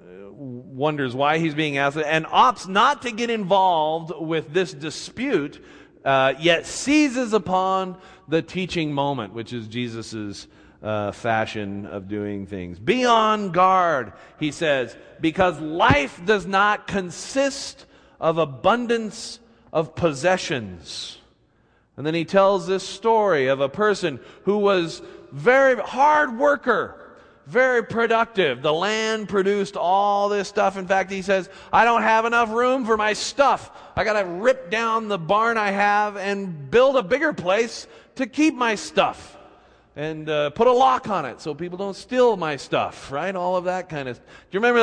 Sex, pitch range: male, 145-215 Hz